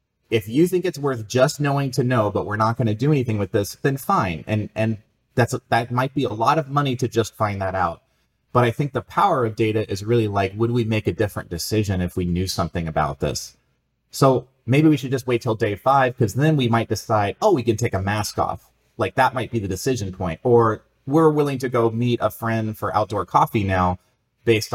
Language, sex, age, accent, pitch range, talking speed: English, male, 30-49, American, 95-125 Hz, 235 wpm